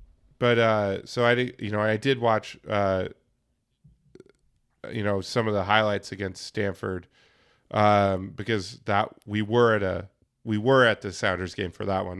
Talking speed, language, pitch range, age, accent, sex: 170 wpm, English, 105-130 Hz, 20-39, American, male